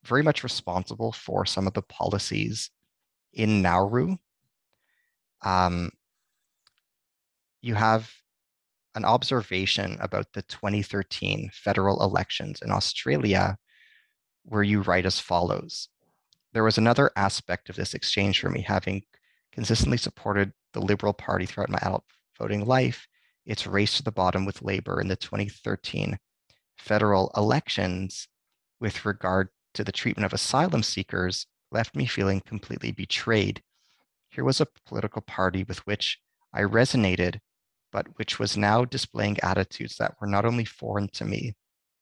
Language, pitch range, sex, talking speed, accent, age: English, 95-115 Hz, male, 135 wpm, American, 30-49